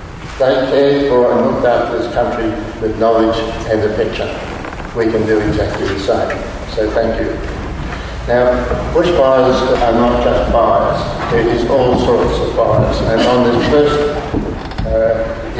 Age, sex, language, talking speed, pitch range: 60-79, male, English, 150 wpm, 110-125 Hz